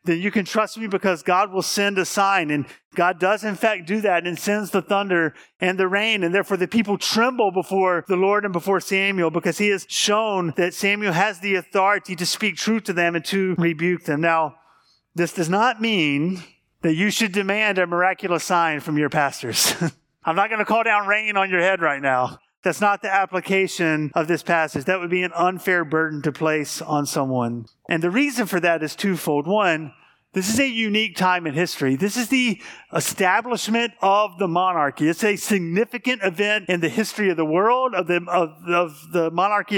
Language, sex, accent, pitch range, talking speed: English, male, American, 170-205 Hz, 200 wpm